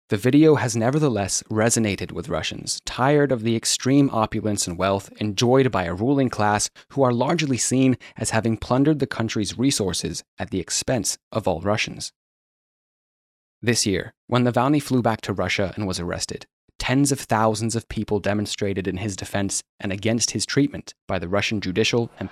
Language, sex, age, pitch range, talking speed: English, male, 20-39, 100-130 Hz, 170 wpm